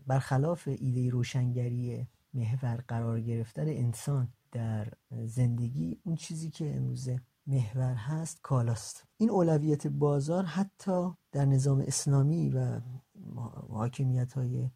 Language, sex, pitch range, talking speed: Persian, male, 120-145 Hz, 100 wpm